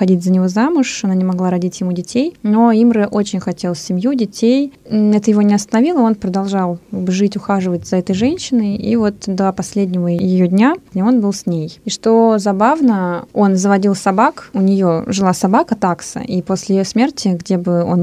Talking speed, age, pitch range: 185 wpm, 20-39, 185-240 Hz